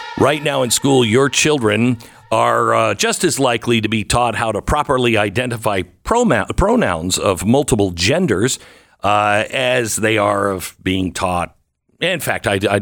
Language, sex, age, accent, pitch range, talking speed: English, male, 50-69, American, 105-160 Hz, 160 wpm